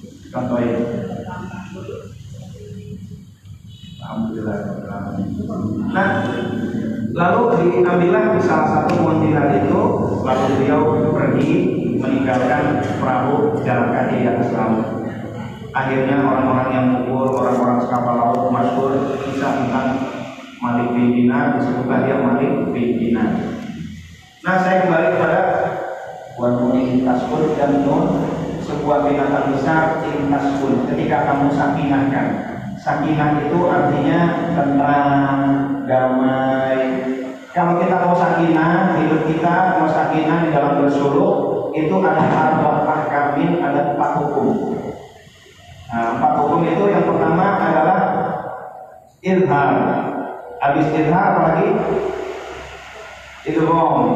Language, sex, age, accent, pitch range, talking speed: Indonesian, male, 40-59, native, 130-160 Hz, 95 wpm